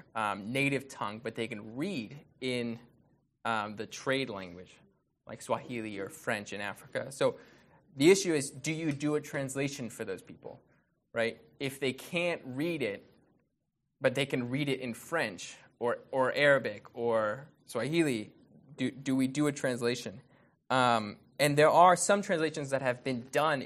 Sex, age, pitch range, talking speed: male, 20-39, 120-150 Hz, 160 wpm